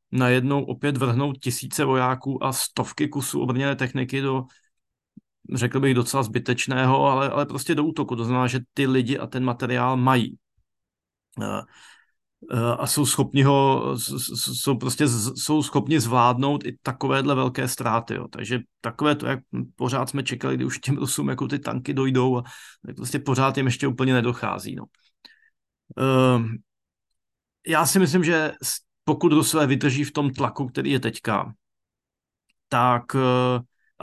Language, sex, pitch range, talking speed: Slovak, male, 120-135 Hz, 145 wpm